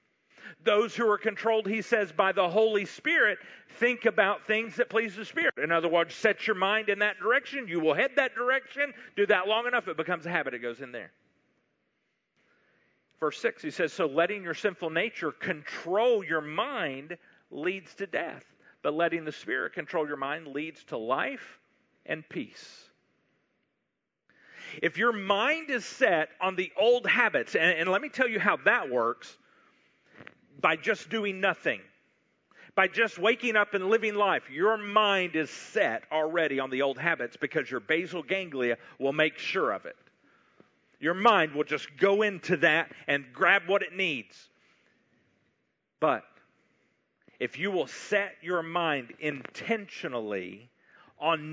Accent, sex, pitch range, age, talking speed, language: American, male, 160-220 Hz, 40-59, 160 wpm, English